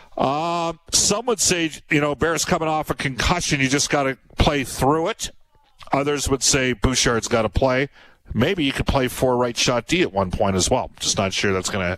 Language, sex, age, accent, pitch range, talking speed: English, male, 50-69, American, 100-135 Hz, 210 wpm